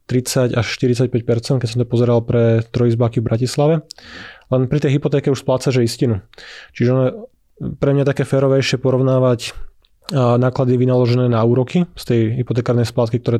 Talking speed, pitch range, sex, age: 160 wpm, 120-130 Hz, male, 20-39